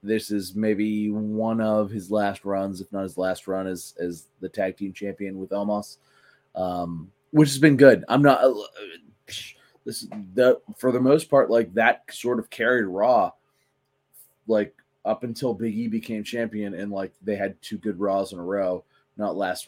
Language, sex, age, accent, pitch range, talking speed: English, male, 20-39, American, 100-125 Hz, 185 wpm